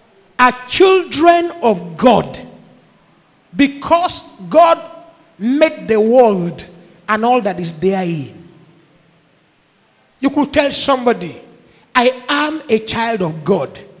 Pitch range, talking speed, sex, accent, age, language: 215-310 Hz, 105 wpm, male, Nigerian, 50-69, English